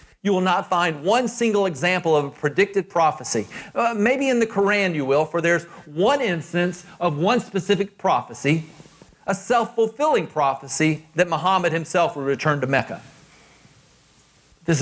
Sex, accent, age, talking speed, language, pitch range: male, American, 40-59, 150 wpm, English, 155-210 Hz